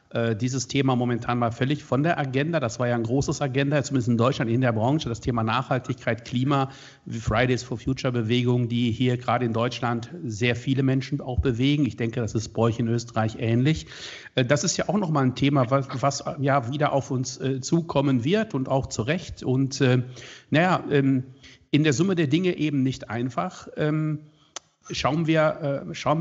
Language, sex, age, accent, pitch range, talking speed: German, male, 50-69, German, 125-150 Hz, 180 wpm